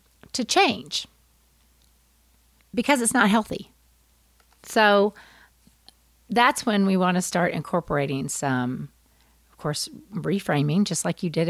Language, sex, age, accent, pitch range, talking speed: English, female, 40-59, American, 135-215 Hz, 115 wpm